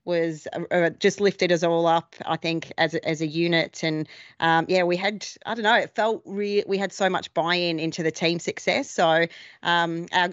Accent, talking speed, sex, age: Australian, 215 wpm, female, 30-49